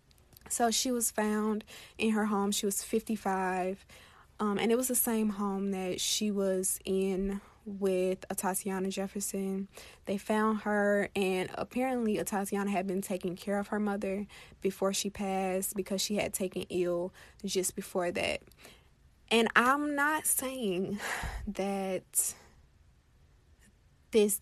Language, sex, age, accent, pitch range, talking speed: English, female, 20-39, American, 185-205 Hz, 135 wpm